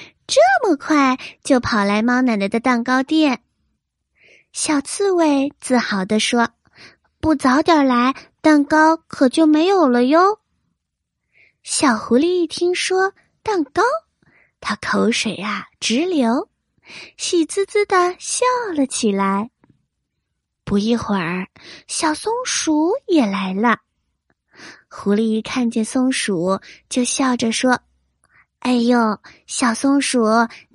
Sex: female